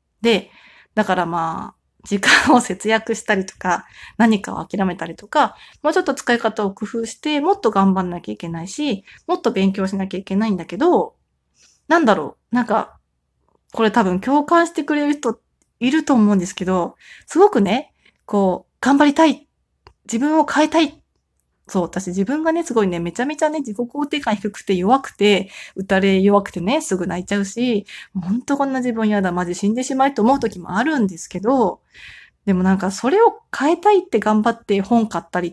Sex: female